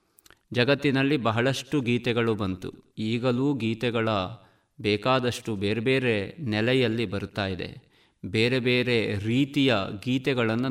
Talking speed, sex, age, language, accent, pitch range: 85 wpm, male, 50-69, Kannada, native, 110-140 Hz